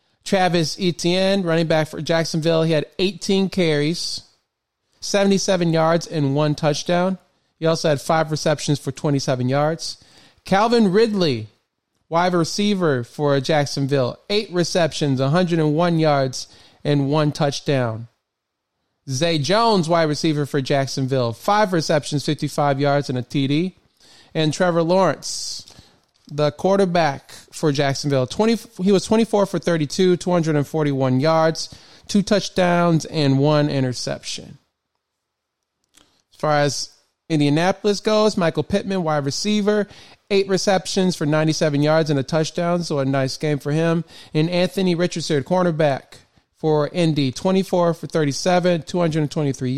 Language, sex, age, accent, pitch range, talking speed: English, male, 30-49, American, 145-180 Hz, 125 wpm